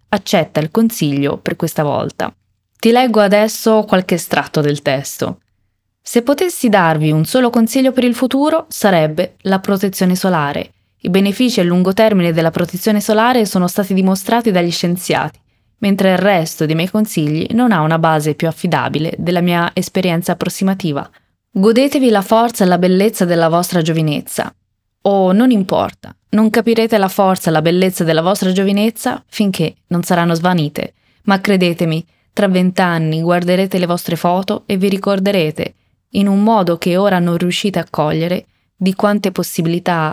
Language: Italian